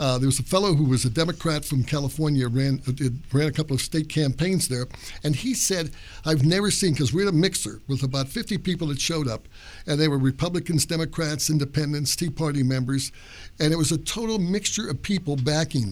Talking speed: 205 wpm